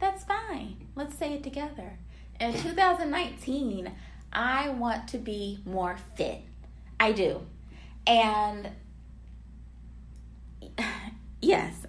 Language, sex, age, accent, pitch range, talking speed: English, female, 20-39, American, 170-230 Hz, 90 wpm